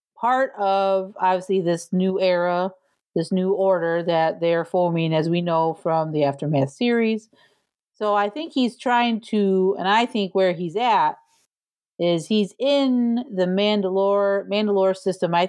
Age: 40-59